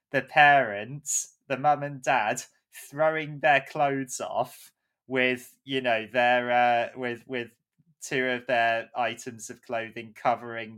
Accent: British